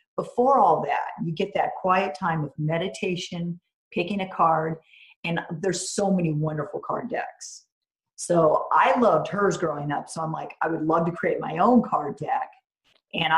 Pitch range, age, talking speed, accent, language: 160-225 Hz, 40-59, 175 wpm, American, English